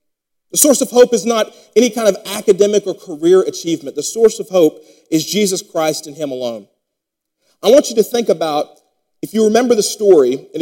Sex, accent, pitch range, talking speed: male, American, 175-235 Hz, 200 wpm